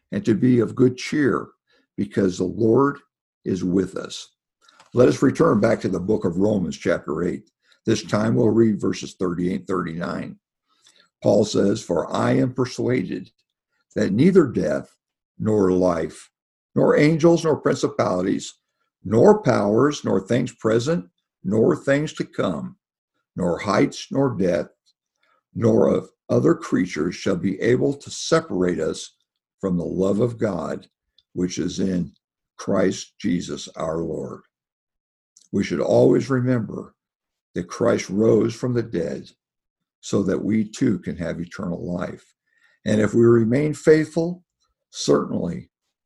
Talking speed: 135 wpm